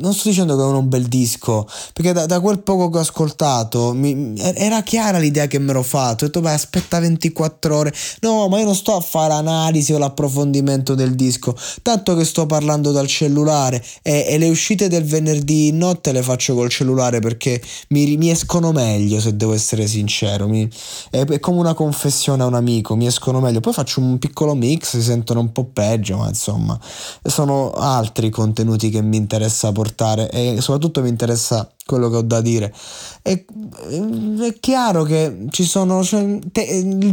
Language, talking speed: Italian, 185 wpm